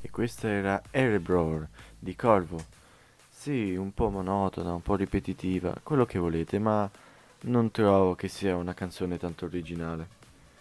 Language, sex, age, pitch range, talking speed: Italian, male, 20-39, 90-105 Hz, 140 wpm